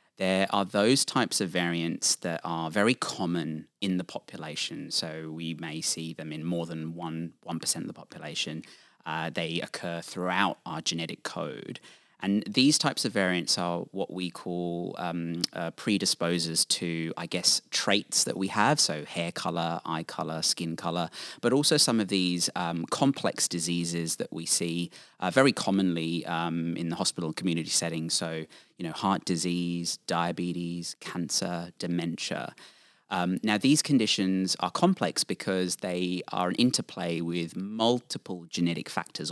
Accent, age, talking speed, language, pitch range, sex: British, 30-49, 155 wpm, English, 85-100 Hz, male